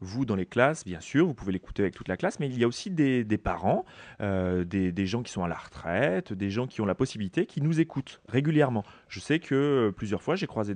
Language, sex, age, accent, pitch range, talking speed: French, male, 30-49, French, 105-165 Hz, 270 wpm